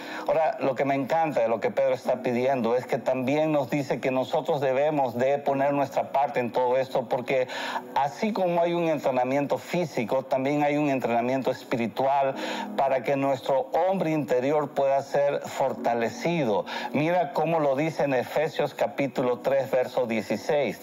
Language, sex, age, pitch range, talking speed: Spanish, male, 50-69, 135-170 Hz, 160 wpm